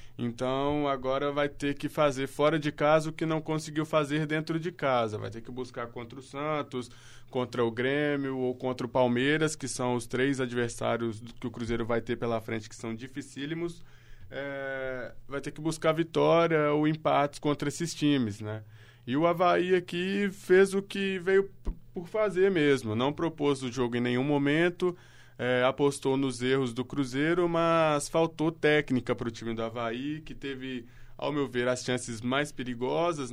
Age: 20-39